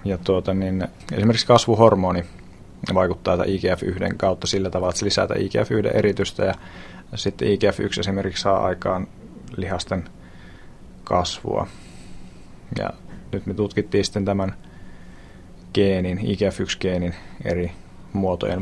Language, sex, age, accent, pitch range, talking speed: Finnish, male, 30-49, native, 90-100 Hz, 105 wpm